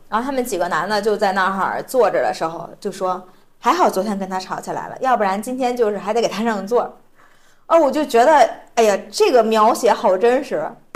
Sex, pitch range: female, 195-255 Hz